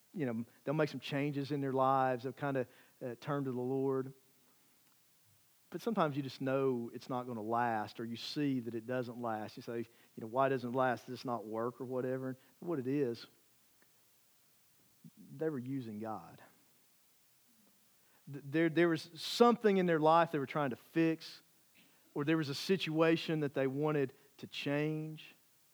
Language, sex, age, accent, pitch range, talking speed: English, male, 50-69, American, 130-155 Hz, 180 wpm